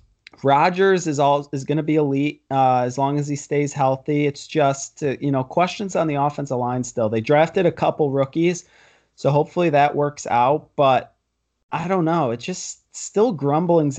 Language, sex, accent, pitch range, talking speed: English, male, American, 130-155 Hz, 190 wpm